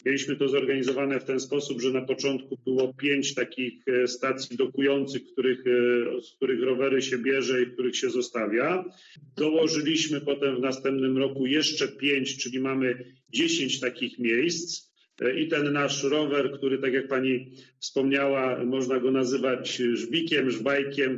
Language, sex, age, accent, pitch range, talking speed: Polish, male, 40-59, native, 125-140 Hz, 140 wpm